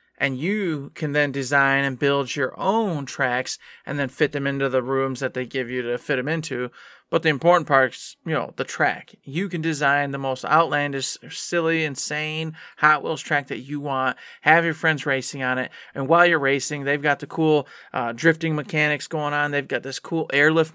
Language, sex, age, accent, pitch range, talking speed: English, male, 20-39, American, 135-160 Hz, 210 wpm